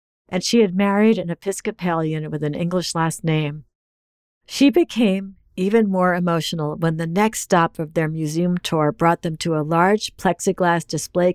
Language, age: English, 50-69